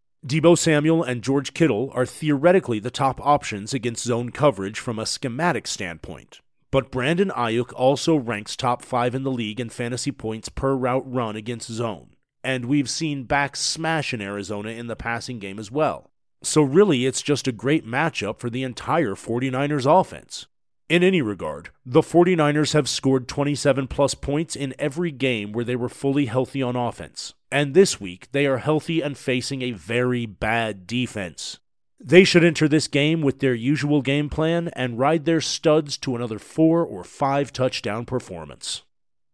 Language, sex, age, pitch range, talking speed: English, male, 40-59, 120-150 Hz, 170 wpm